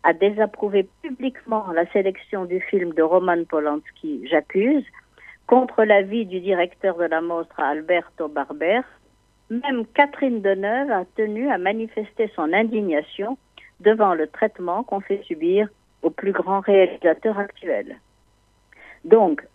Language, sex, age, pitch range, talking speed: French, female, 60-79, 180-235 Hz, 125 wpm